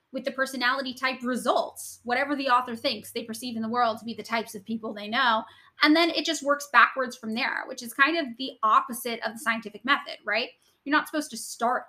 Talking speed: 230 wpm